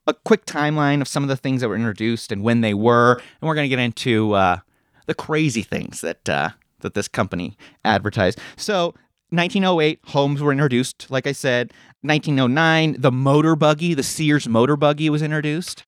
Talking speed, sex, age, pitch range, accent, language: 185 wpm, male, 30-49, 125-160 Hz, American, English